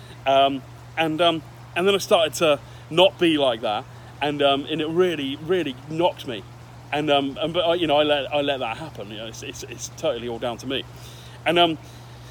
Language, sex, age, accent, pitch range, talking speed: English, male, 30-49, British, 120-150 Hz, 215 wpm